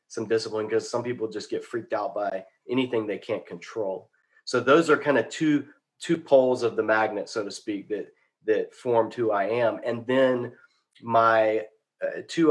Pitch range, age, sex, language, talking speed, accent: 110-135 Hz, 30-49, male, English, 185 wpm, American